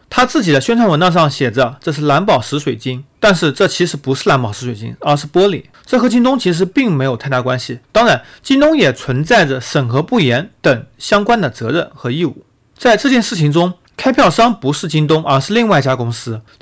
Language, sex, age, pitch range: Chinese, male, 30-49, 135-215 Hz